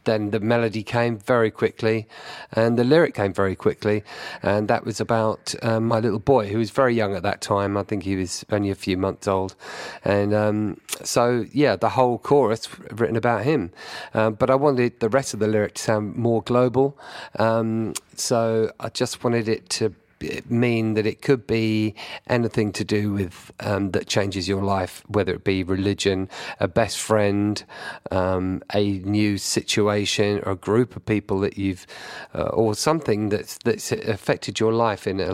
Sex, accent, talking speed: male, British, 185 wpm